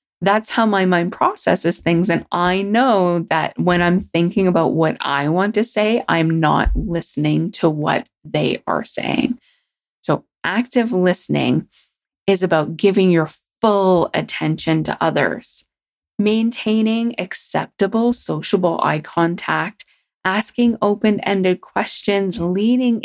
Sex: female